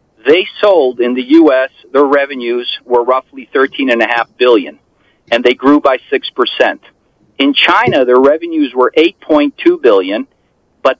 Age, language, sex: 40-59, English, male